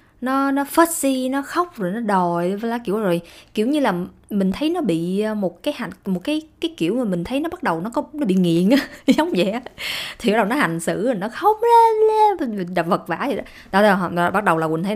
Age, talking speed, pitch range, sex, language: 20-39, 220 wpm, 180-245 Hz, female, Vietnamese